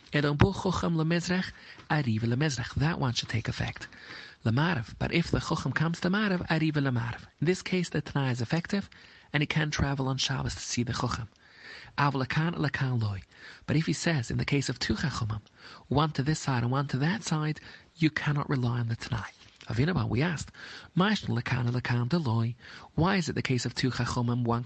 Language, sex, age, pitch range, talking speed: English, male, 40-59, 120-155 Hz, 175 wpm